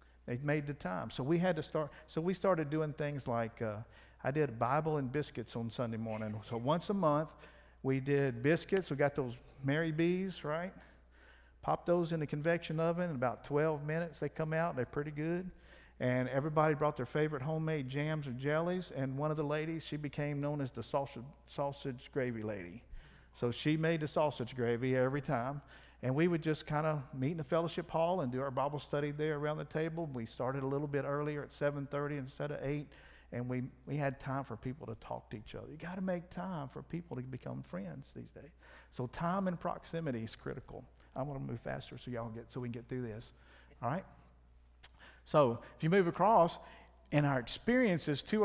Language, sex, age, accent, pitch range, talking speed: English, male, 50-69, American, 120-160 Hz, 210 wpm